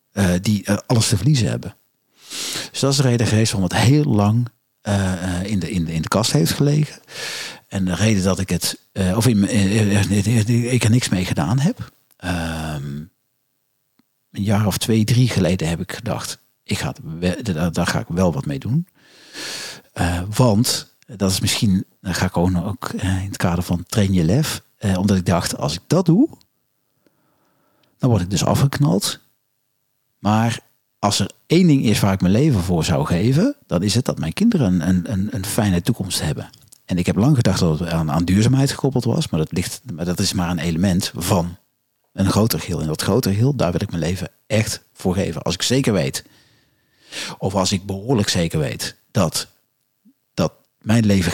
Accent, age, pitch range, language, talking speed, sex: Dutch, 50-69, 90-125 Hz, Dutch, 190 wpm, male